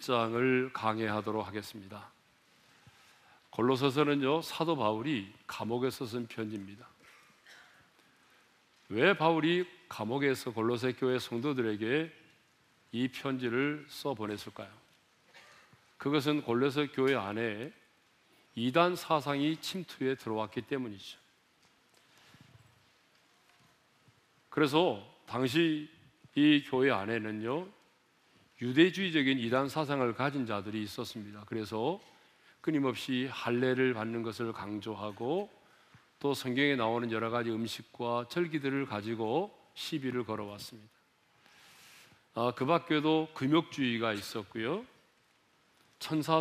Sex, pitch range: male, 115-150 Hz